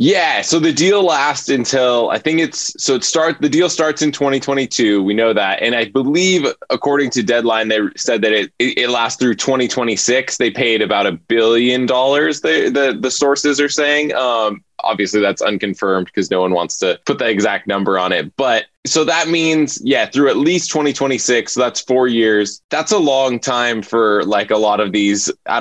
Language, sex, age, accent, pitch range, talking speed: English, male, 20-39, American, 105-145 Hz, 200 wpm